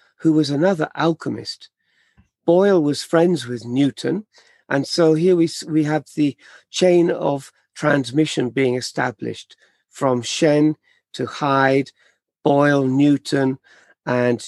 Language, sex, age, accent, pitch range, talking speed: English, male, 50-69, British, 125-155 Hz, 115 wpm